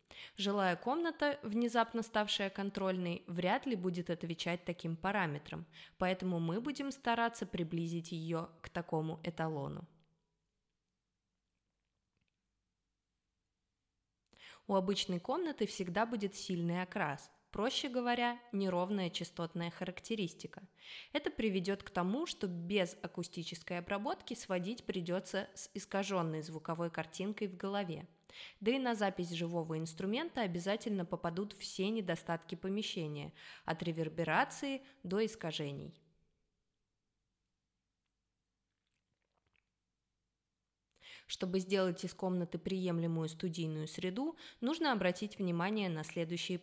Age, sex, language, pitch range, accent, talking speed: 20-39, female, Russian, 160-200 Hz, native, 95 wpm